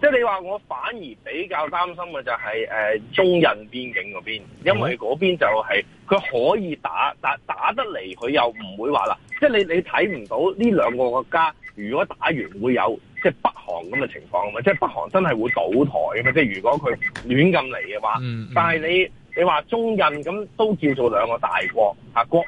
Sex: male